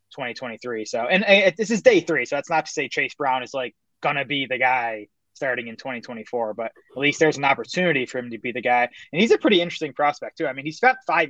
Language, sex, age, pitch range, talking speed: English, male, 20-39, 125-155 Hz, 255 wpm